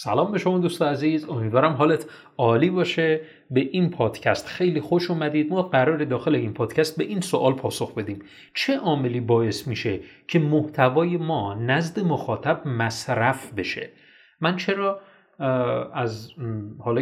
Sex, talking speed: male, 145 wpm